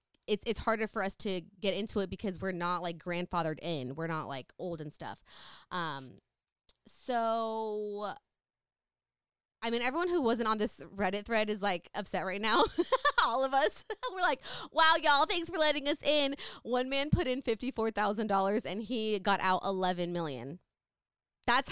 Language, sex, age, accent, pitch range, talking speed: English, female, 20-39, American, 190-255 Hz, 170 wpm